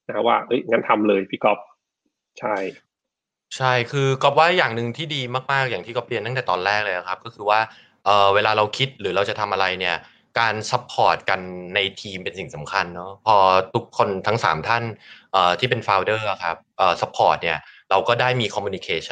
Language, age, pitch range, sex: Thai, 20-39, 105-140 Hz, male